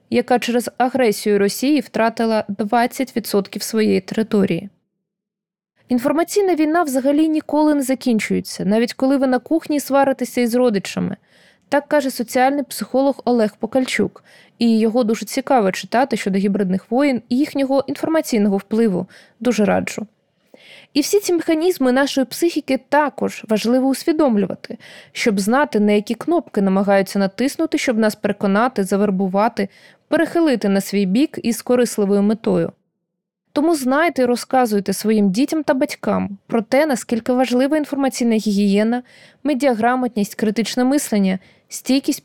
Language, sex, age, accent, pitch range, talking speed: Ukrainian, female, 20-39, native, 210-270 Hz, 125 wpm